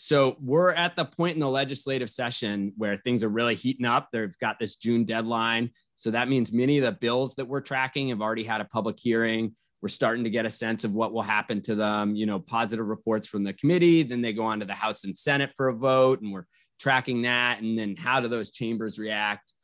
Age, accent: 20-39, American